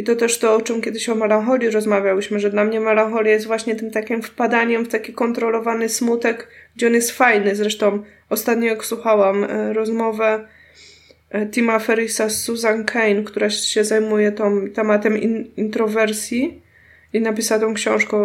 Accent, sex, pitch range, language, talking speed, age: native, female, 205-230 Hz, Polish, 165 wpm, 20-39